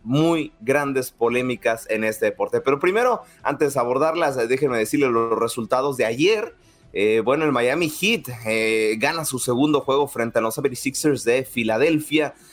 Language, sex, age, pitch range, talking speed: Spanish, male, 30-49, 115-165 Hz, 165 wpm